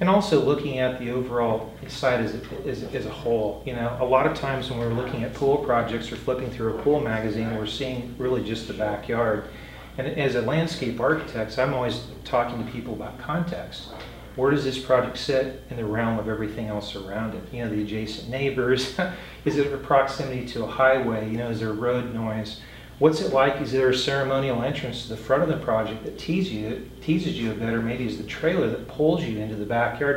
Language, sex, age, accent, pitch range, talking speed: English, male, 40-59, American, 115-140 Hz, 225 wpm